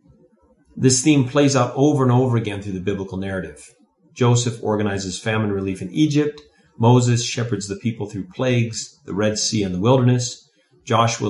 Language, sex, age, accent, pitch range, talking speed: English, male, 40-59, American, 100-130 Hz, 165 wpm